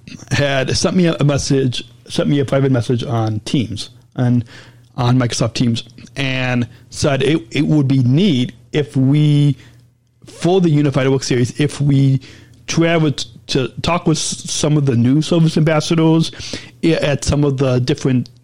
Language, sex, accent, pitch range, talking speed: English, male, American, 120-150 Hz, 155 wpm